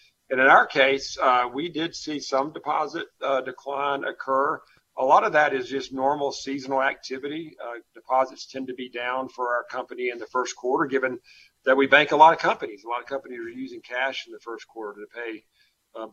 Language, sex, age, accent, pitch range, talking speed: English, male, 50-69, American, 120-155 Hz, 210 wpm